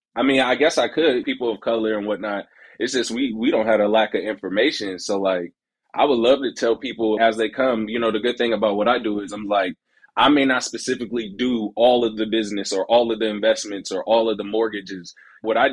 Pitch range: 100-120 Hz